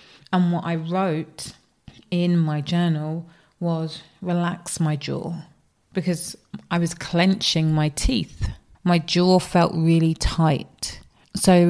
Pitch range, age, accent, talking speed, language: 155-180 Hz, 30-49, British, 120 wpm, English